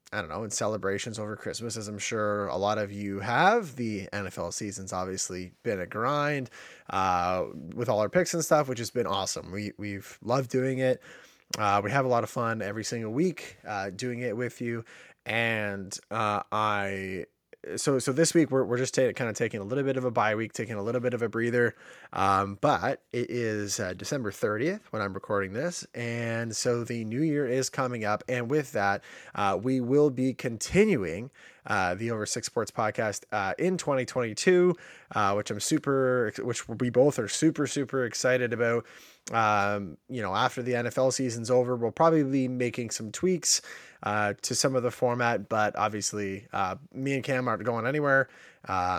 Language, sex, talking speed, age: English, male, 195 wpm, 20-39